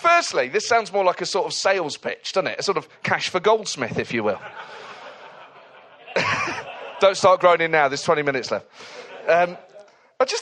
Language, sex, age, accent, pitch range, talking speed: English, male, 30-49, British, 135-225 Hz, 185 wpm